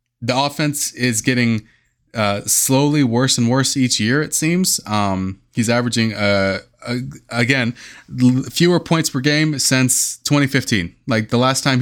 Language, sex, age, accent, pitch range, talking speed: English, male, 20-39, American, 100-125 Hz, 150 wpm